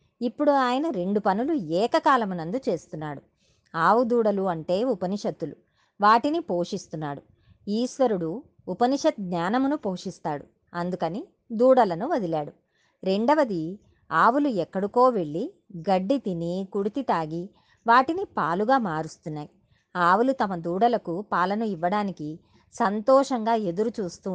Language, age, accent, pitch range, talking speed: Telugu, 30-49, native, 180-255 Hz, 90 wpm